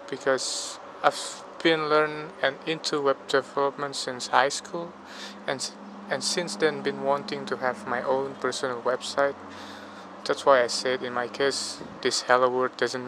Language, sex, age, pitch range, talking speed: Indonesian, male, 20-39, 125-140 Hz, 155 wpm